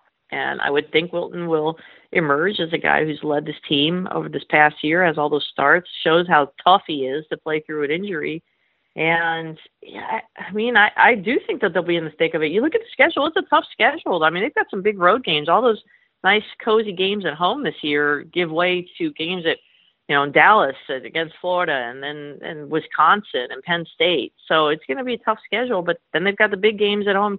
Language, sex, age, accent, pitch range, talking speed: English, female, 40-59, American, 155-200 Hz, 235 wpm